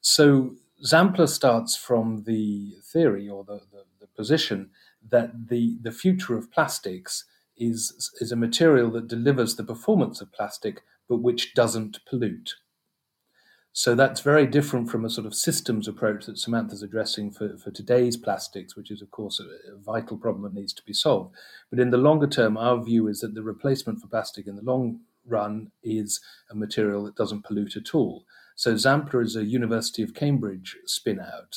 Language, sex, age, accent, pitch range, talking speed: English, male, 40-59, British, 105-125 Hz, 180 wpm